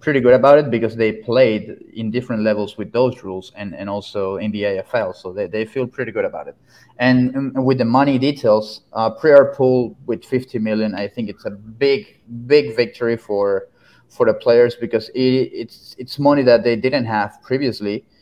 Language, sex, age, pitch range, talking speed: English, male, 30-49, 105-120 Hz, 195 wpm